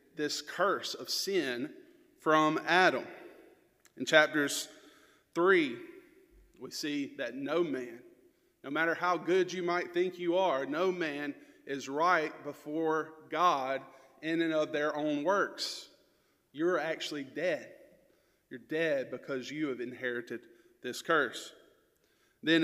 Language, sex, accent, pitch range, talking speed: English, male, American, 150-185 Hz, 125 wpm